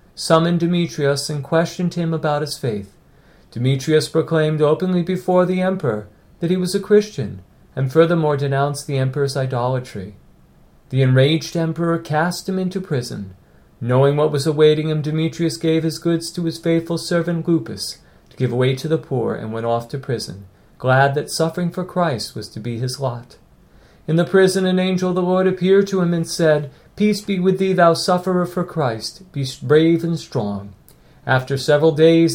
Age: 40-59